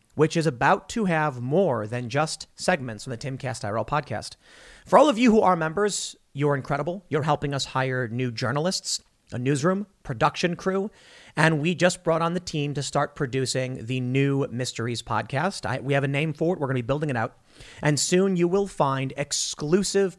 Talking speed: 200 wpm